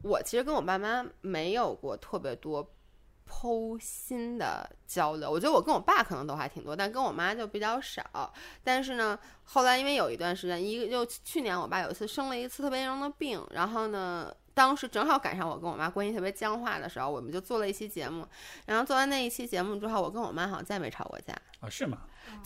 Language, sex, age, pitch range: Chinese, female, 20-39, 185-260 Hz